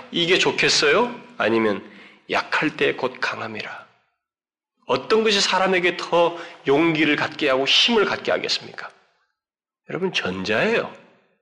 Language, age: Korean, 40-59